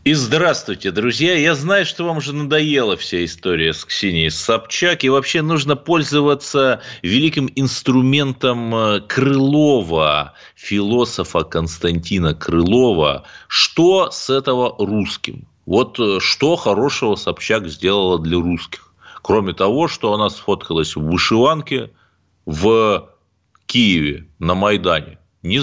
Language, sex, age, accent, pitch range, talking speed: Russian, male, 30-49, native, 85-130 Hz, 110 wpm